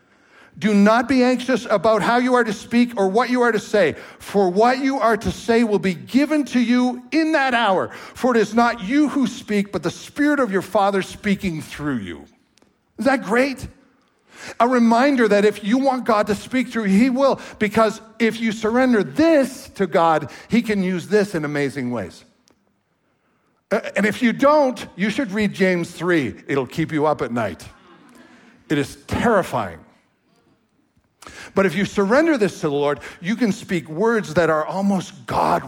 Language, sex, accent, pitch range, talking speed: English, male, American, 180-235 Hz, 190 wpm